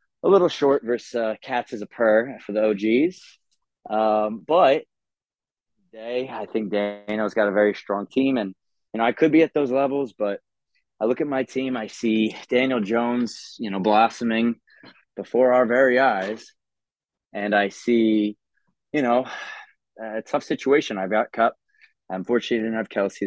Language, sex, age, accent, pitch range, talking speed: English, male, 20-39, American, 100-120 Hz, 170 wpm